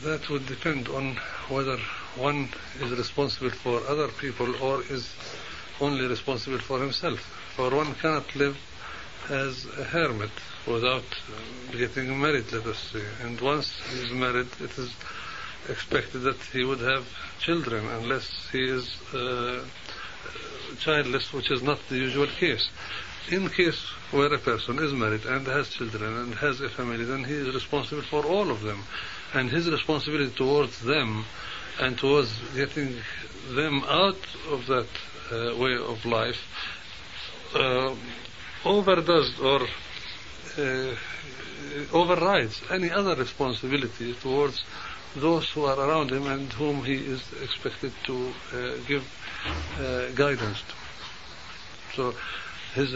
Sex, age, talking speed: male, 60-79, 135 wpm